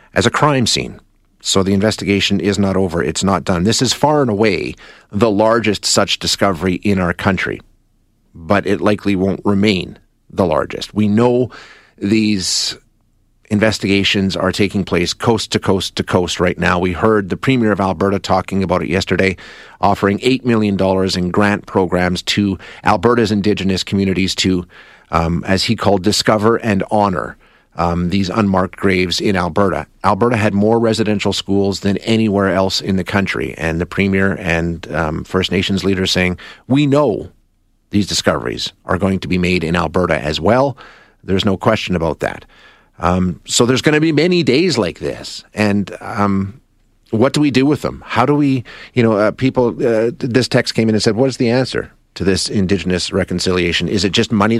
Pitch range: 95-110 Hz